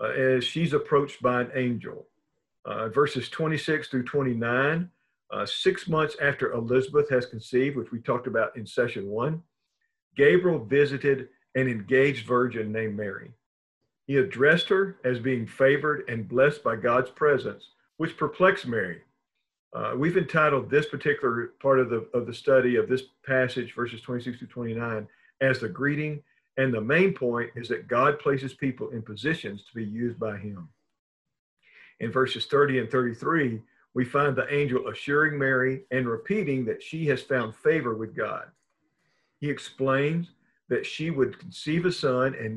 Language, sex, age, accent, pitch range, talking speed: English, male, 50-69, American, 120-145 Hz, 165 wpm